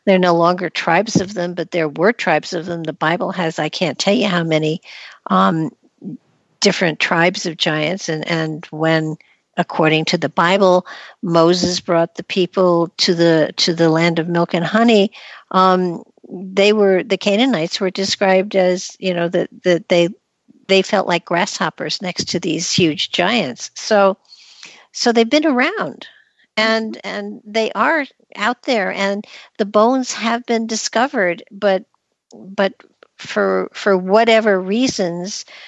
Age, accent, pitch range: 60-79, American, 170-205 Hz